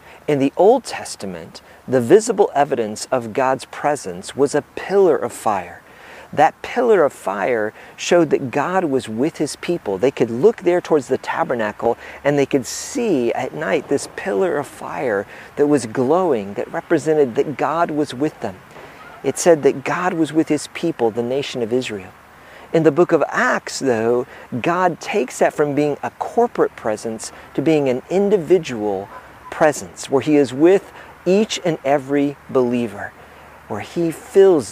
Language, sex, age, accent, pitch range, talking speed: English, male, 50-69, American, 125-170 Hz, 165 wpm